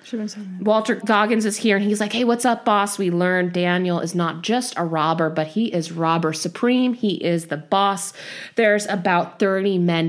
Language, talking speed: English, 190 wpm